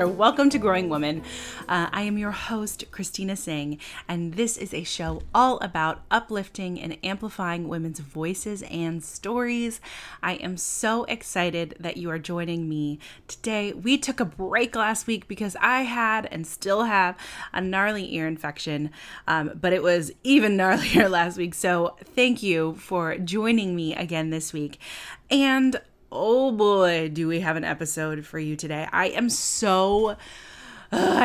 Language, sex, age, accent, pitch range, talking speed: English, female, 30-49, American, 170-225 Hz, 160 wpm